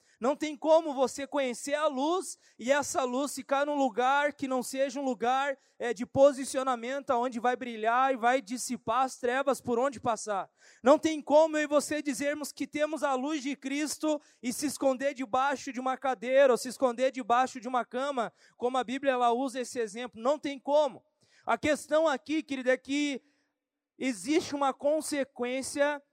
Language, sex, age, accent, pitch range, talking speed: Portuguese, male, 20-39, Brazilian, 245-275 Hz, 175 wpm